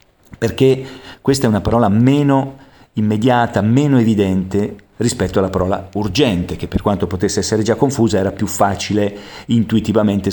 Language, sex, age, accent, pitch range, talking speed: Italian, male, 50-69, native, 95-130 Hz, 140 wpm